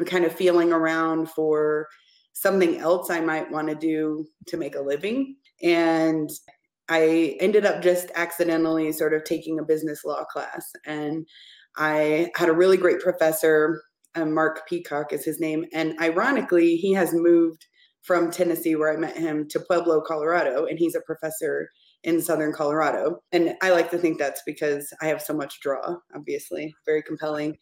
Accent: American